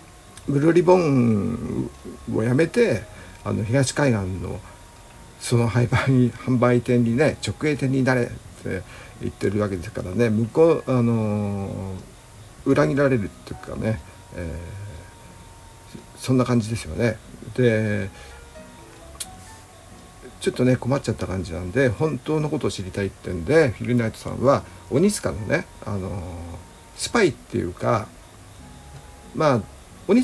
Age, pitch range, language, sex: 60-79, 95-125 Hz, Japanese, male